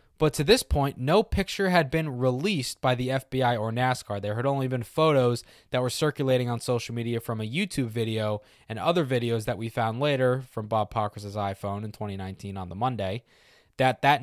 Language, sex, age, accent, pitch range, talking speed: English, male, 20-39, American, 110-140 Hz, 200 wpm